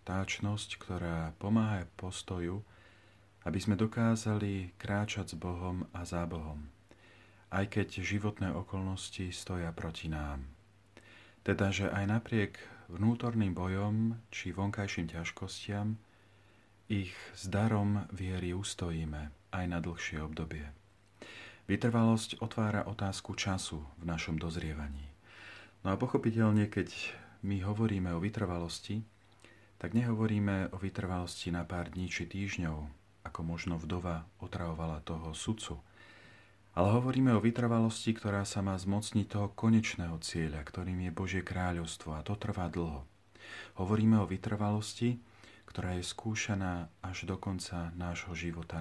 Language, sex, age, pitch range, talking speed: Slovak, male, 40-59, 85-105 Hz, 120 wpm